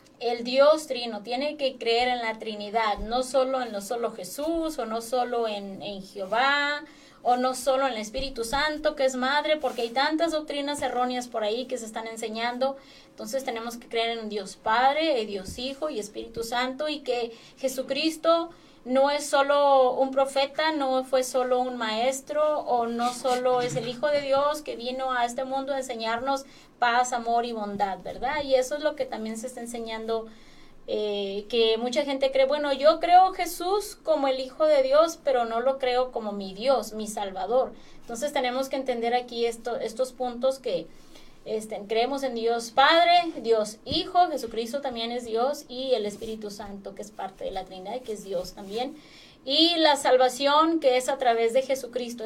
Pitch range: 230-280 Hz